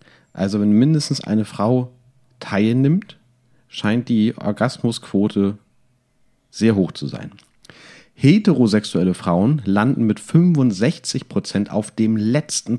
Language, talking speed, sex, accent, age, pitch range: German, 100 wpm, male, German, 40-59, 100-125 Hz